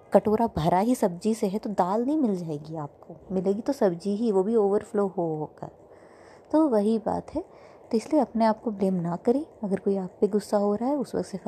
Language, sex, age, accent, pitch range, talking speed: Hindi, female, 20-39, native, 180-220 Hz, 230 wpm